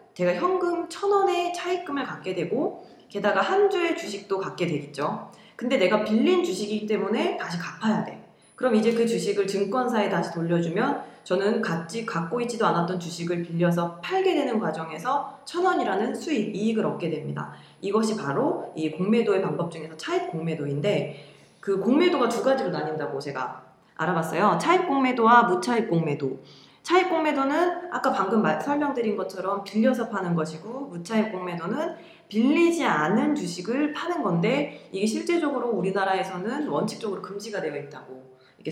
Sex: female